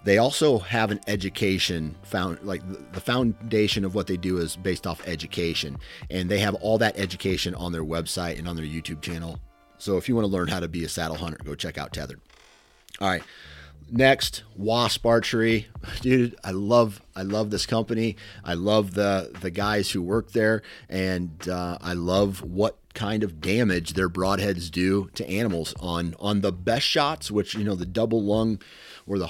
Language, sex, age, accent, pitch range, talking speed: English, male, 30-49, American, 90-110 Hz, 190 wpm